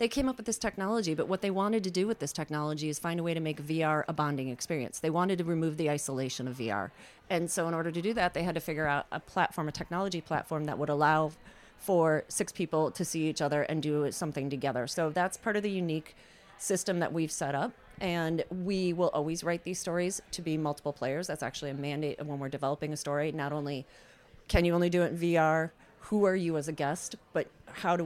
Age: 30-49